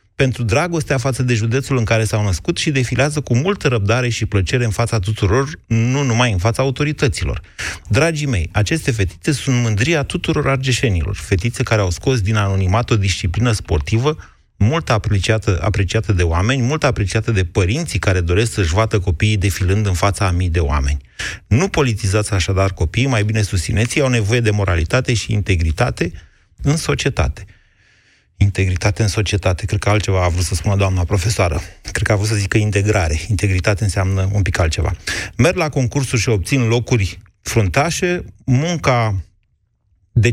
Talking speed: 165 wpm